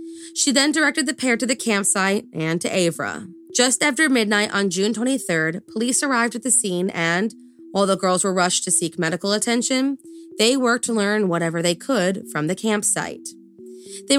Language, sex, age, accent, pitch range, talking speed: English, female, 20-39, American, 180-245 Hz, 180 wpm